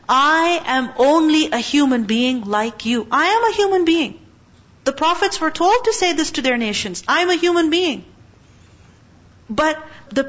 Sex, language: female, English